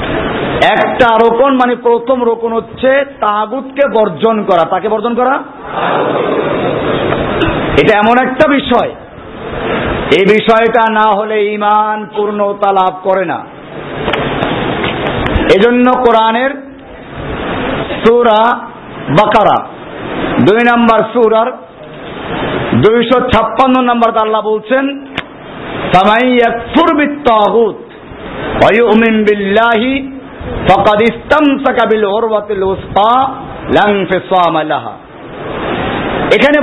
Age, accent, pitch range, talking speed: 50-69, native, 215-265 Hz, 50 wpm